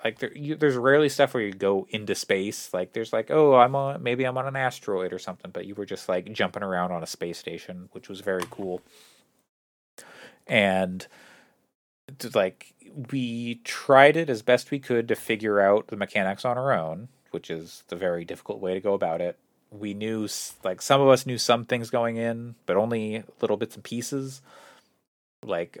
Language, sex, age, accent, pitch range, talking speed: English, male, 30-49, American, 100-135 Hz, 195 wpm